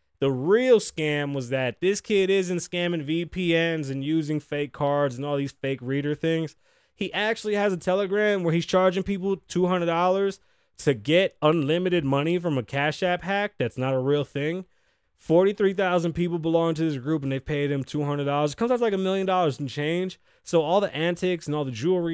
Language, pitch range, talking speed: English, 130-170 Hz, 195 wpm